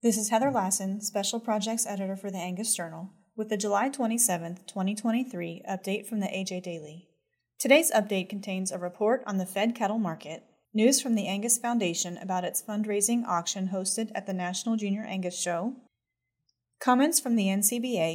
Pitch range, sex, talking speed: 175-220 Hz, female, 170 wpm